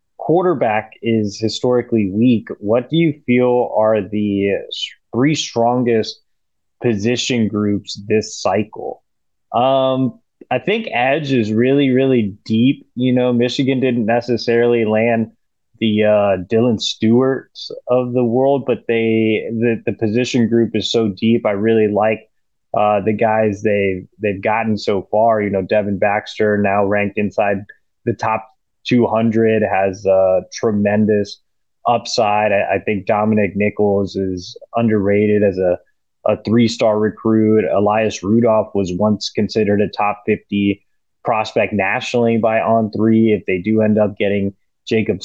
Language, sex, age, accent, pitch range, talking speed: English, male, 20-39, American, 100-115 Hz, 140 wpm